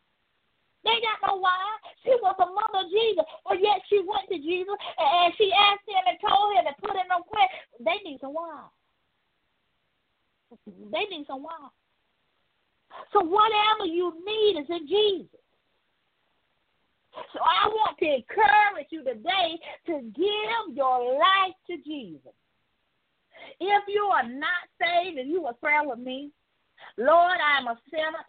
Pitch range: 285-390 Hz